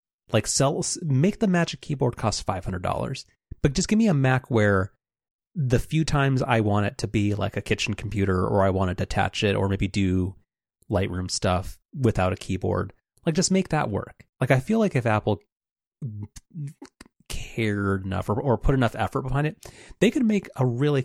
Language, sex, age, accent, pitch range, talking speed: English, male, 30-49, American, 95-130 Hz, 195 wpm